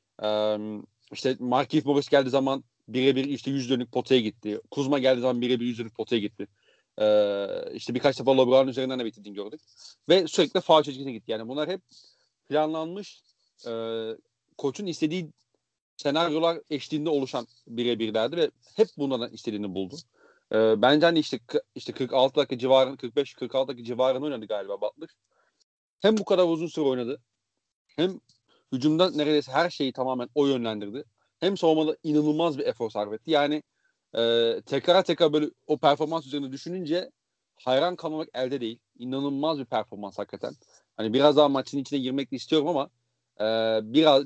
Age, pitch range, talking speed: 40-59, 120-150 Hz, 150 wpm